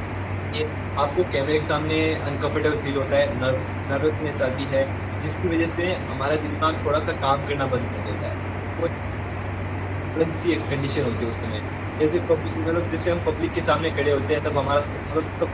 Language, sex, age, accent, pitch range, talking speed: Hindi, male, 20-39, native, 95-135 Hz, 175 wpm